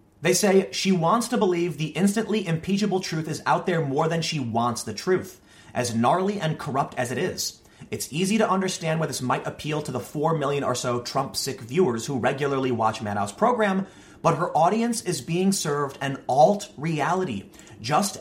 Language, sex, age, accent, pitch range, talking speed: English, male, 30-49, American, 130-190 Hz, 185 wpm